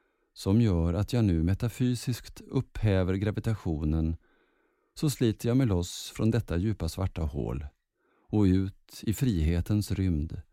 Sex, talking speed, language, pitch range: male, 130 wpm, Swedish, 90-115 Hz